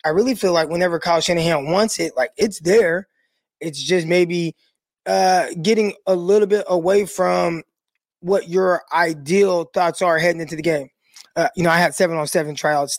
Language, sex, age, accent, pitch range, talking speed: English, male, 20-39, American, 155-190 Hz, 185 wpm